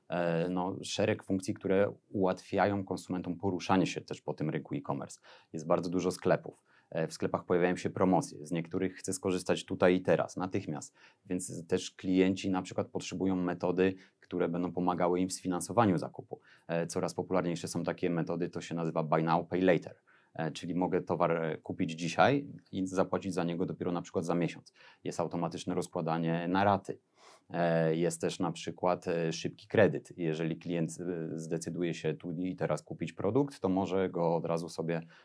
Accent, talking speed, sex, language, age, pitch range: native, 160 wpm, male, Polish, 30-49, 85-95 Hz